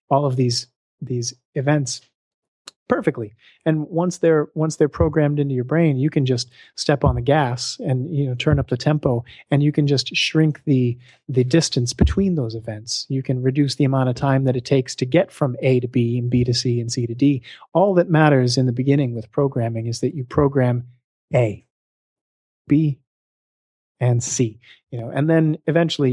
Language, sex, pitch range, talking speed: English, male, 125-150 Hz, 195 wpm